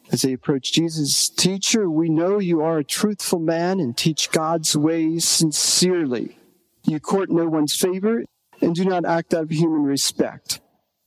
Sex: male